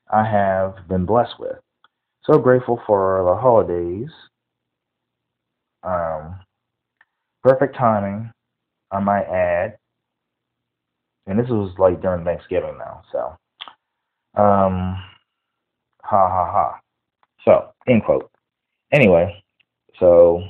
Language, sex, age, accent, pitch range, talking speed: English, male, 30-49, American, 90-115 Hz, 95 wpm